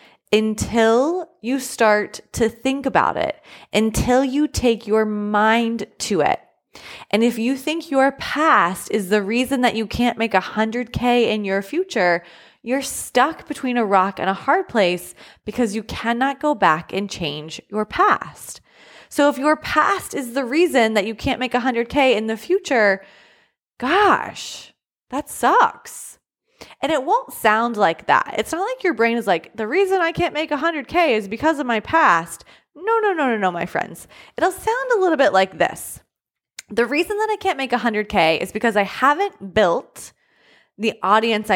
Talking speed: 175 wpm